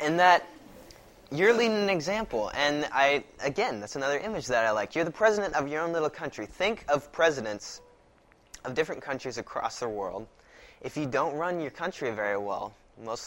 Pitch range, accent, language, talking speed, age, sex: 115-155 Hz, American, English, 185 wpm, 20-39, male